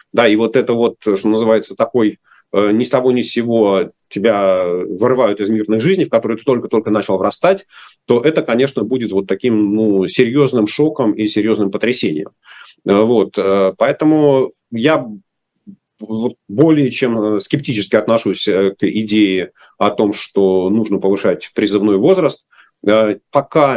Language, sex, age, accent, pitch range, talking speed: Russian, male, 40-59, native, 100-125 Hz, 135 wpm